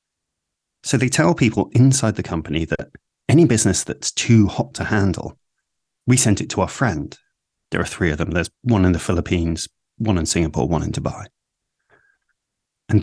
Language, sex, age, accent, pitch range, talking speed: Czech, male, 30-49, British, 90-120 Hz, 175 wpm